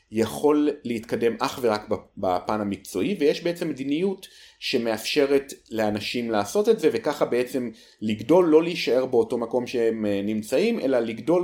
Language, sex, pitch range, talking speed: Hebrew, male, 105-160 Hz, 130 wpm